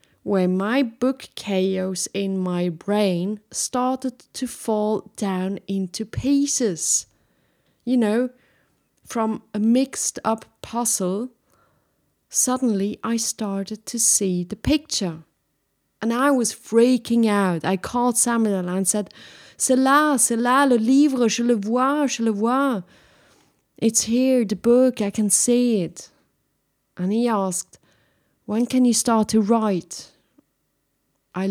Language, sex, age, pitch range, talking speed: English, female, 30-49, 185-235 Hz, 130 wpm